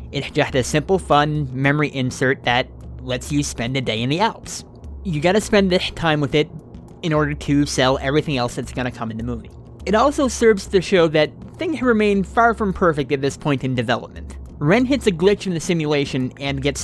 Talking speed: 215 wpm